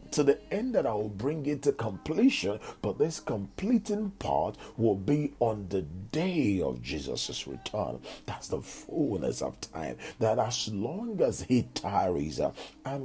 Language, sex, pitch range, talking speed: English, male, 115-170 Hz, 155 wpm